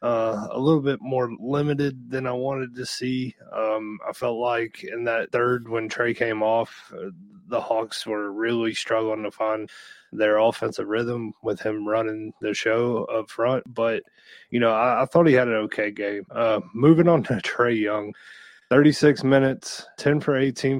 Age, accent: 20-39, American